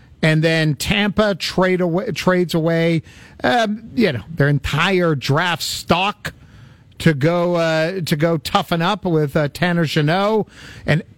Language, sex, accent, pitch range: English, male, American, 150-185 Hz